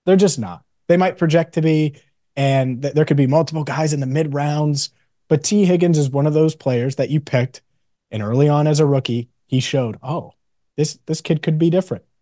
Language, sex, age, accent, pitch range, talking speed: English, male, 30-49, American, 120-150 Hz, 215 wpm